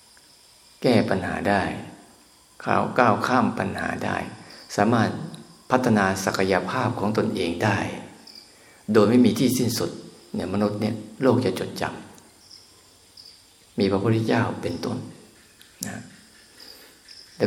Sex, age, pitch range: male, 50-69, 95-125 Hz